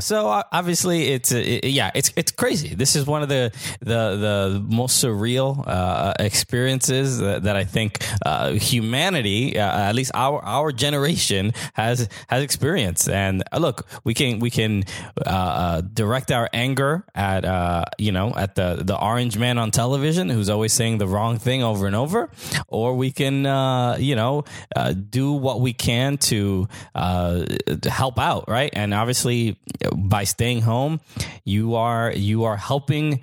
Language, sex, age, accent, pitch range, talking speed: English, male, 20-39, American, 100-135 Hz, 165 wpm